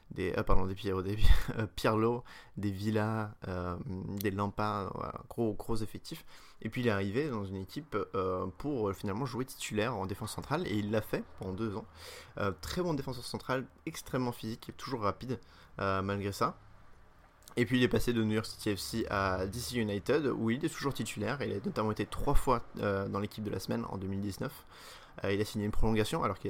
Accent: French